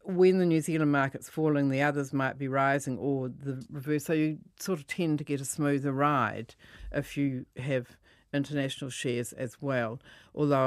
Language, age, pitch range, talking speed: English, 50-69, 130-155 Hz, 180 wpm